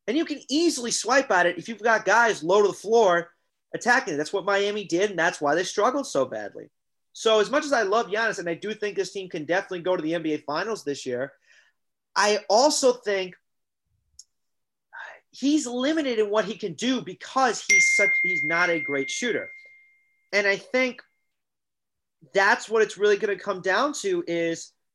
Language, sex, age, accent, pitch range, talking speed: English, male, 30-49, American, 170-235 Hz, 190 wpm